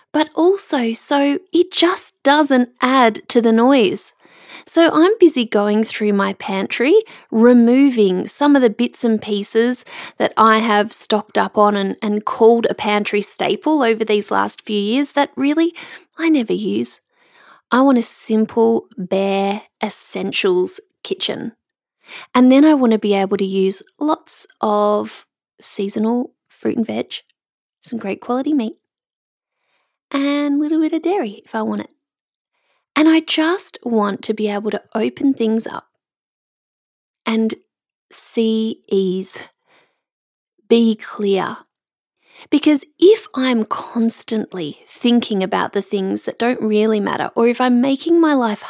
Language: English